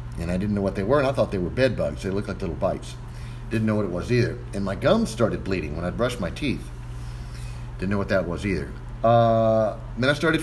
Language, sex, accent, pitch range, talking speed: English, male, American, 90-120 Hz, 260 wpm